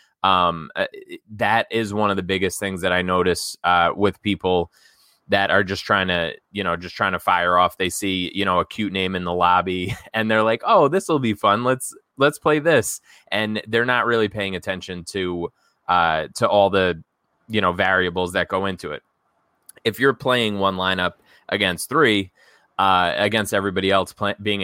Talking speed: 190 wpm